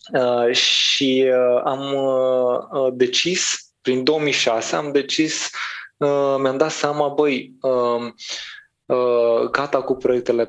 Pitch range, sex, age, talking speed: 115-140 Hz, male, 20-39, 80 wpm